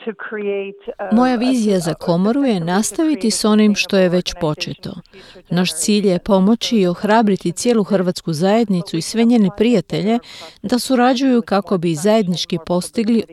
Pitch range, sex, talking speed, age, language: 180-220 Hz, female, 140 wpm, 40-59, Croatian